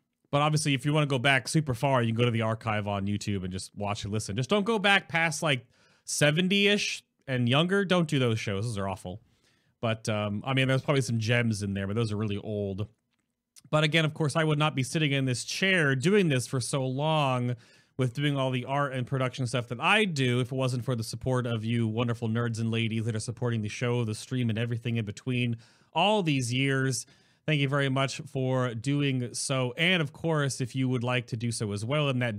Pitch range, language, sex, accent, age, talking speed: 115-145 Hz, English, male, American, 30-49, 240 wpm